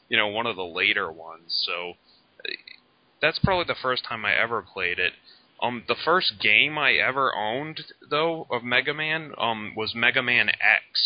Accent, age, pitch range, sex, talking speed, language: American, 20-39, 90-125 Hz, male, 180 wpm, English